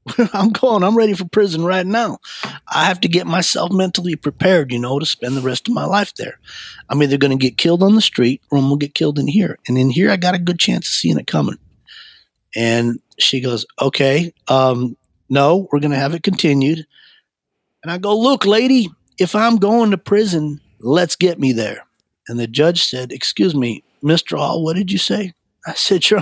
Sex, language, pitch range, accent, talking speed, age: male, English, 130-185 Hz, American, 215 wpm, 40-59